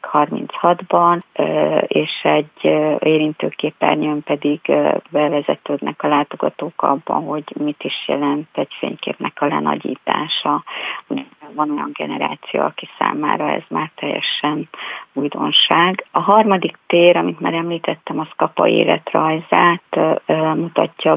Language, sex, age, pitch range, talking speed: Hungarian, female, 30-49, 150-165 Hz, 100 wpm